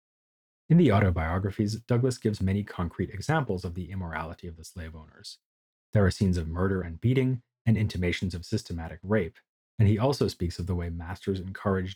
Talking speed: 180 wpm